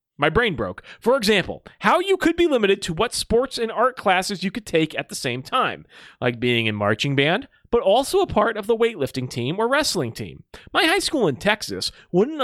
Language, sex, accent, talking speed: English, male, American, 215 wpm